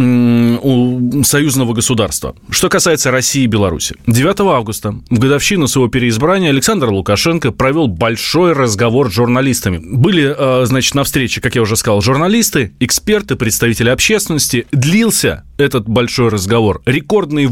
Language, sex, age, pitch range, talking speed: Russian, male, 20-39, 115-150 Hz, 130 wpm